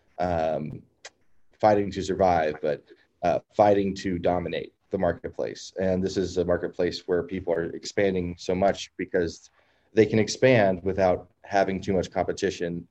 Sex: male